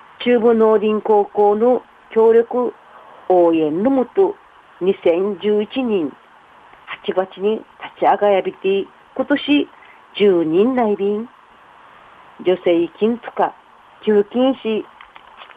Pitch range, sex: 180-255 Hz, female